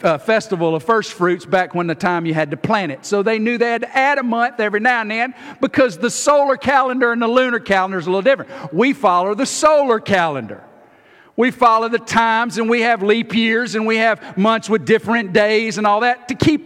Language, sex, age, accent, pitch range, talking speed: English, male, 50-69, American, 155-235 Hz, 235 wpm